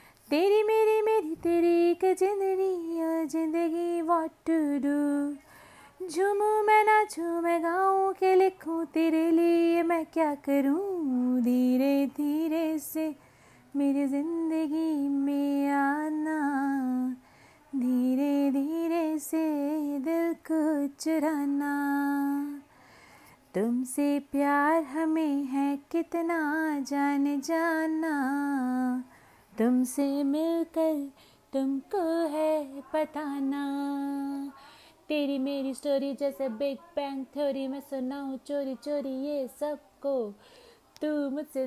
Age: 30-49